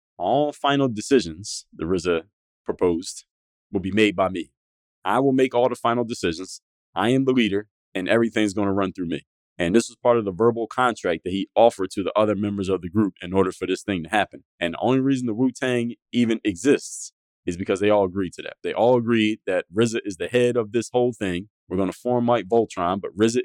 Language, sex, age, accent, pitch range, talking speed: English, male, 30-49, American, 95-120 Hz, 225 wpm